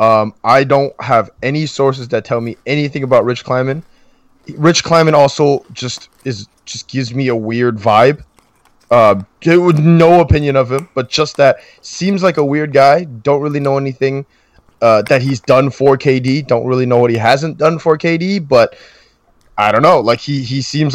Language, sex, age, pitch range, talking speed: English, male, 20-39, 115-145 Hz, 190 wpm